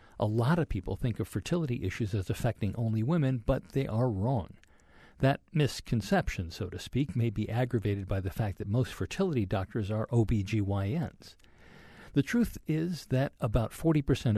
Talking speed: 165 wpm